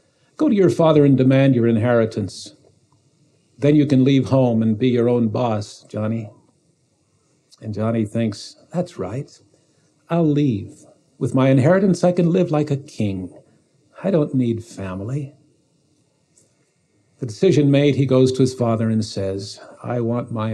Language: English